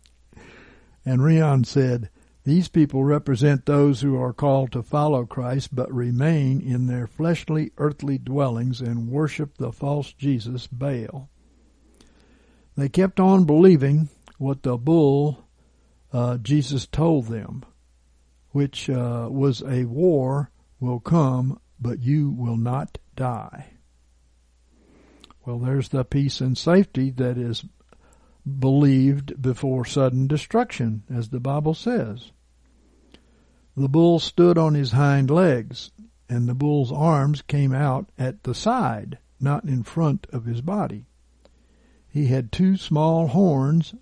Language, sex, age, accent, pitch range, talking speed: English, male, 60-79, American, 120-150 Hz, 125 wpm